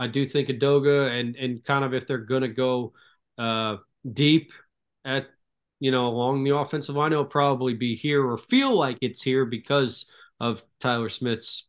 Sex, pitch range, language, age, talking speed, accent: male, 125-155 Hz, English, 20-39, 180 wpm, American